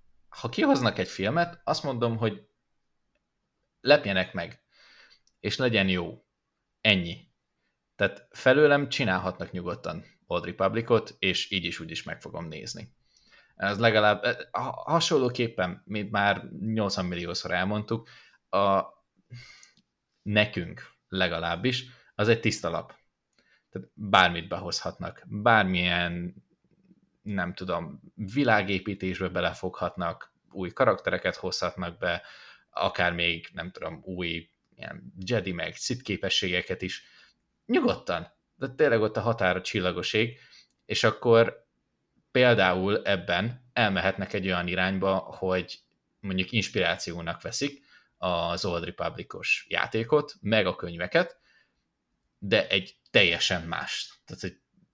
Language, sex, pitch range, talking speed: Hungarian, male, 90-115 Hz, 105 wpm